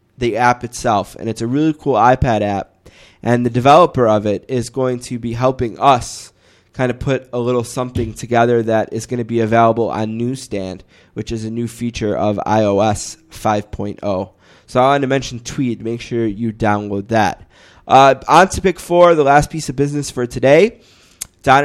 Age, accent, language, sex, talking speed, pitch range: 20-39, American, English, male, 190 wpm, 110-125 Hz